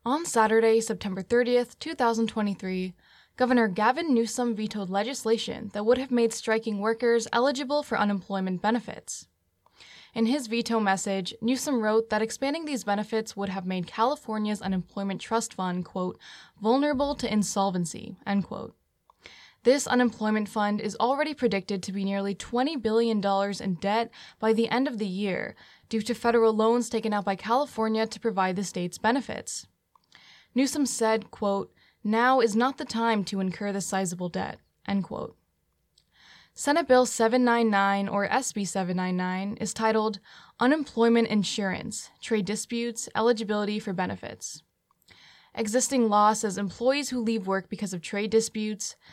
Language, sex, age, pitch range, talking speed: English, female, 10-29, 200-235 Hz, 140 wpm